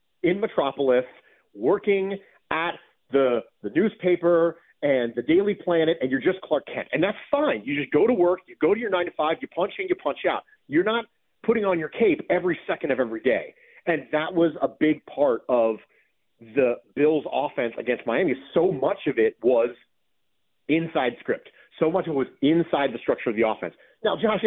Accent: American